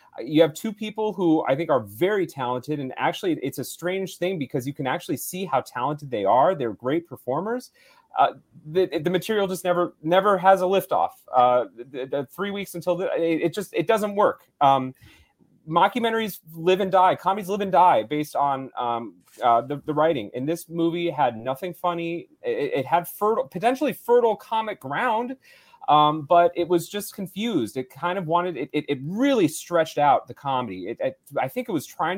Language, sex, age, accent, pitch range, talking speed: English, male, 30-49, American, 145-200 Hz, 195 wpm